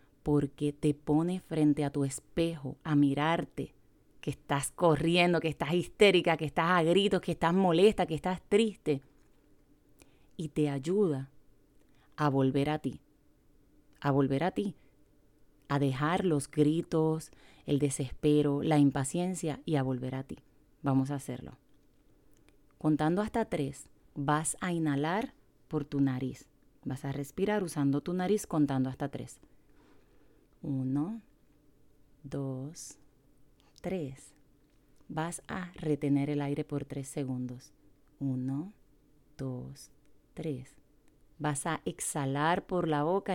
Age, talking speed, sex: 30-49, 125 wpm, female